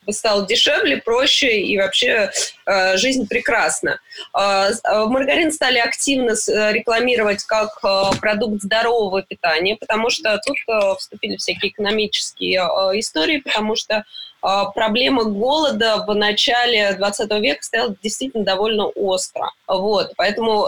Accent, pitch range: native, 195-240 Hz